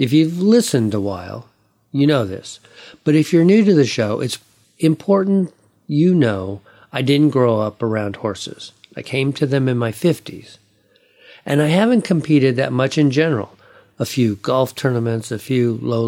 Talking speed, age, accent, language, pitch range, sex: 175 wpm, 50-69, American, English, 110-150 Hz, male